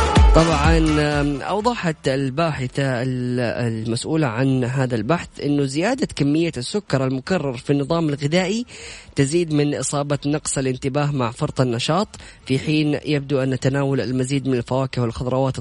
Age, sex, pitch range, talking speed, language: 20-39, female, 125-155 Hz, 125 wpm, Arabic